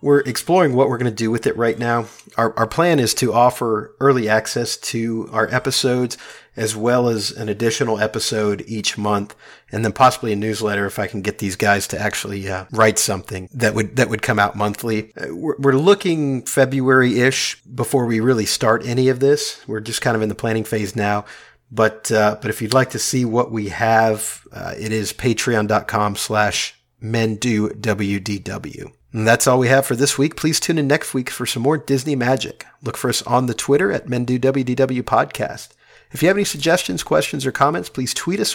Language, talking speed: English, 195 wpm